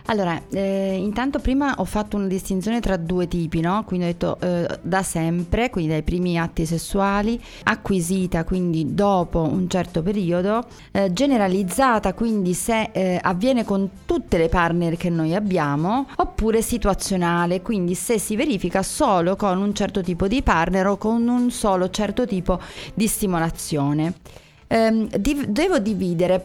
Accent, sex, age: native, female, 30-49